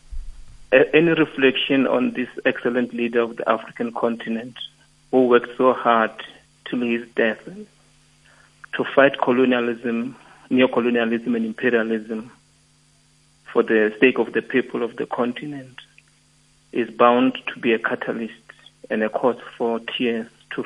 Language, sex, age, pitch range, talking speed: English, male, 50-69, 115-140 Hz, 130 wpm